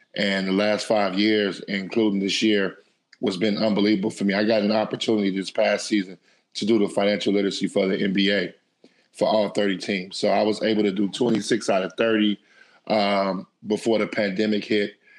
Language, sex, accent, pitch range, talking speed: English, male, American, 100-110 Hz, 185 wpm